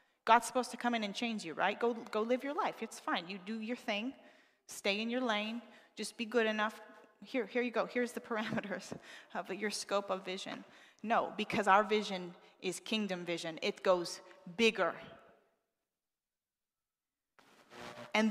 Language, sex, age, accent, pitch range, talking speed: English, female, 30-49, American, 190-240 Hz, 165 wpm